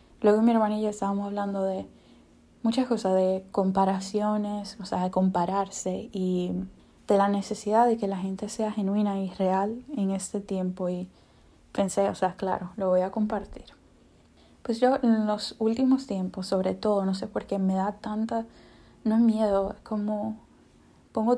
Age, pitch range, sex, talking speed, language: 10-29, 190-215 Hz, female, 165 wpm, English